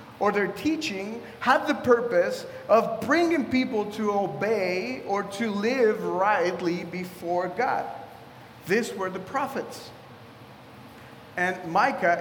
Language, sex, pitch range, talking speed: English, male, 205-260 Hz, 115 wpm